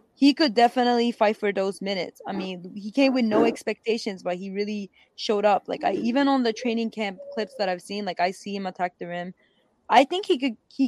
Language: English